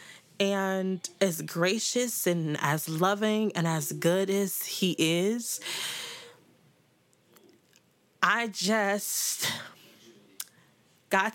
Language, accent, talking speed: English, American, 80 wpm